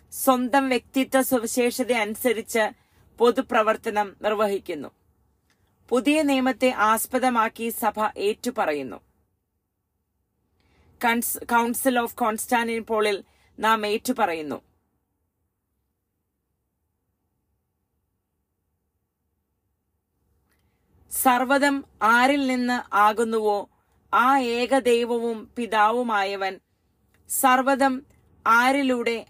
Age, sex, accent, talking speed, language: 30-49, female, Indian, 50 wpm, English